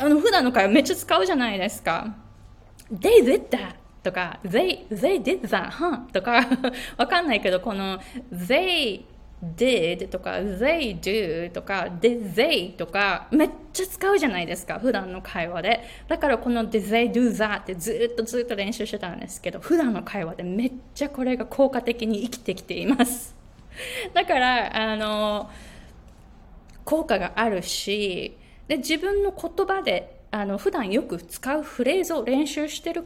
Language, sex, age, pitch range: Japanese, female, 20-39, 195-290 Hz